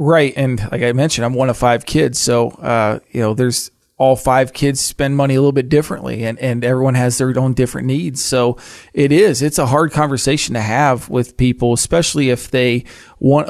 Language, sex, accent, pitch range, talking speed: English, male, American, 125-145 Hz, 210 wpm